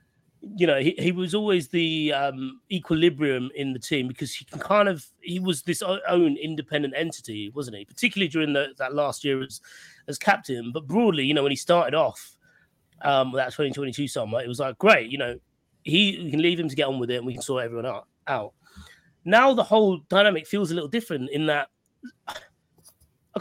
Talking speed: 205 wpm